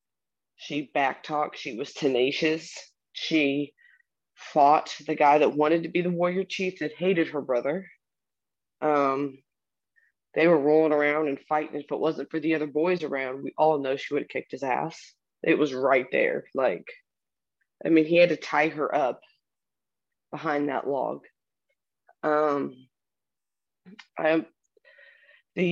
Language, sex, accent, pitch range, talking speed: English, female, American, 145-170 Hz, 145 wpm